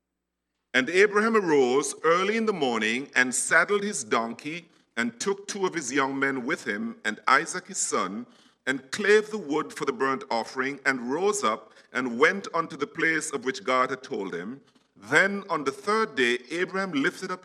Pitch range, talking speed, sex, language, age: 125-195 Hz, 185 wpm, male, English, 50-69